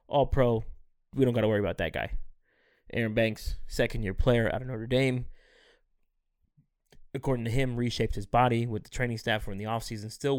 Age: 20-39